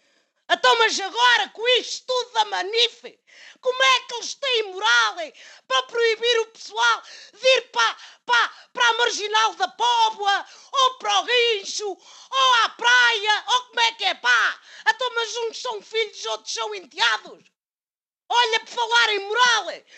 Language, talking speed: Portuguese, 160 wpm